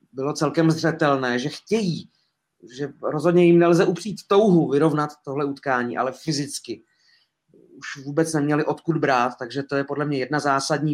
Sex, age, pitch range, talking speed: male, 30-49, 125-150 Hz, 155 wpm